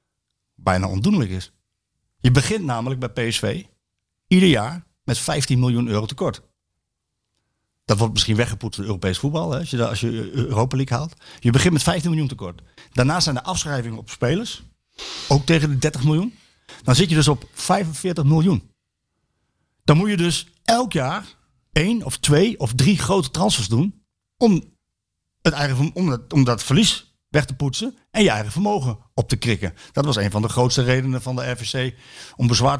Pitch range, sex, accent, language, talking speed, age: 115-165 Hz, male, Dutch, Dutch, 175 wpm, 50-69